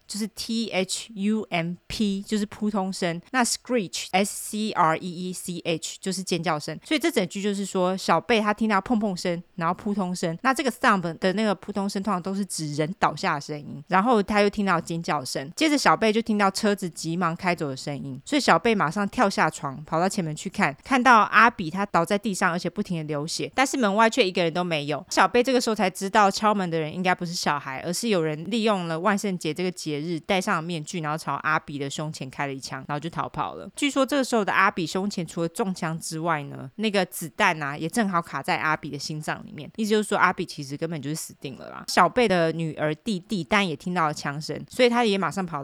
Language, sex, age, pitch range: Chinese, female, 20-39, 160-210 Hz